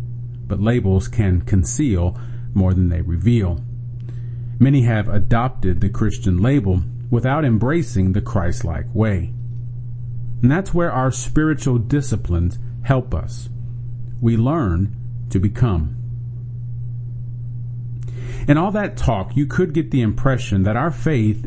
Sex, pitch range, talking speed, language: male, 115-125 Hz, 120 wpm, English